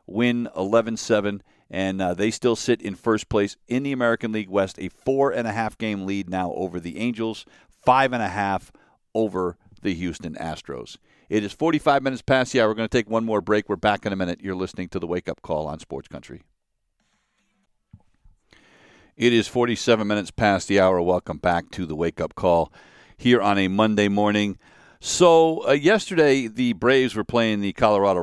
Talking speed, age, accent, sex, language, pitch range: 180 wpm, 50-69, American, male, English, 95-120 Hz